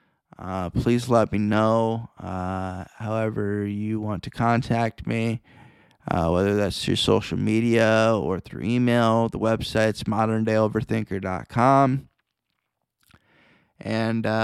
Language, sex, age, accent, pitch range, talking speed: English, male, 20-39, American, 105-120 Hz, 105 wpm